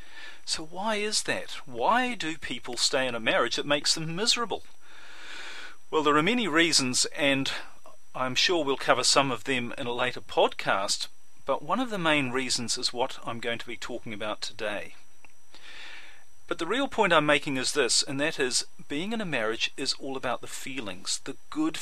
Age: 40-59